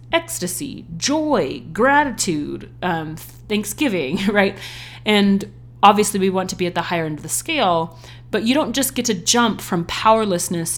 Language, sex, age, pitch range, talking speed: English, female, 30-49, 160-195 Hz, 155 wpm